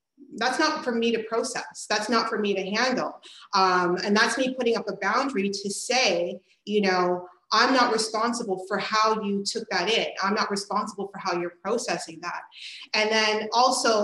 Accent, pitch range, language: American, 185-230 Hz, English